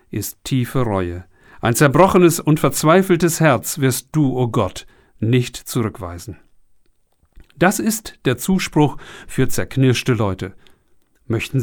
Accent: German